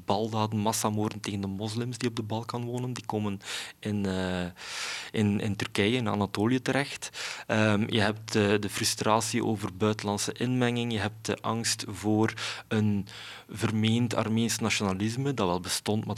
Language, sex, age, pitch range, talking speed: Dutch, male, 20-39, 95-110 Hz, 145 wpm